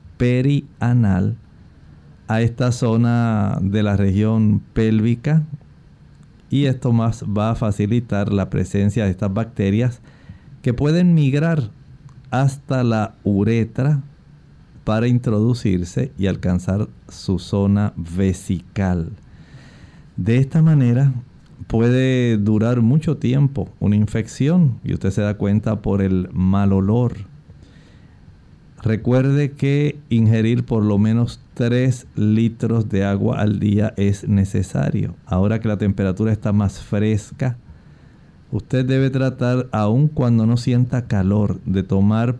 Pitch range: 100-125 Hz